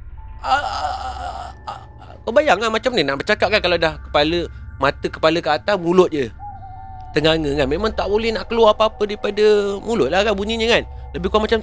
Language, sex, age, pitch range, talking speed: Malay, male, 30-49, 120-175 Hz, 195 wpm